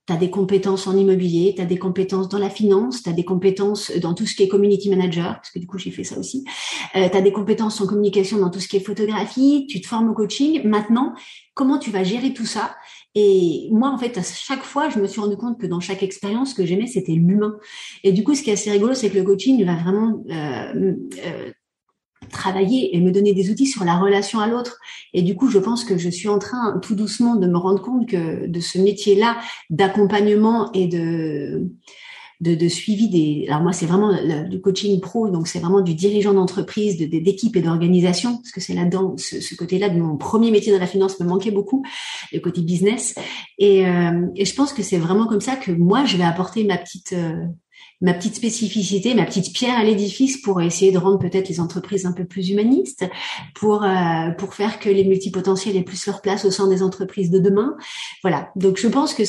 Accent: French